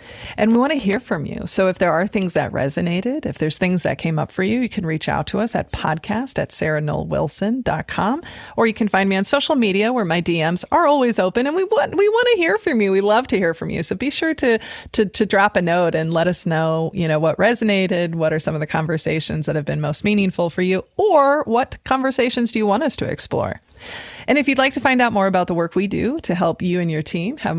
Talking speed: 260 wpm